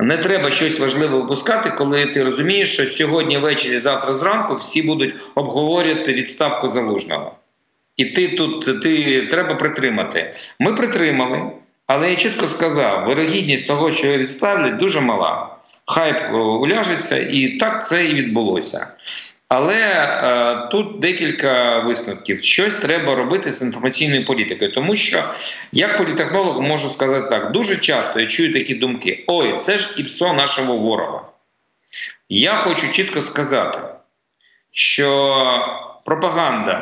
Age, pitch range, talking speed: 50-69, 130-170 Hz, 130 wpm